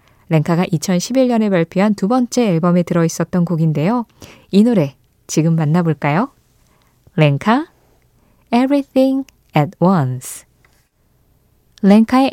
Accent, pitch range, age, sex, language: native, 155-225 Hz, 20-39, female, Korean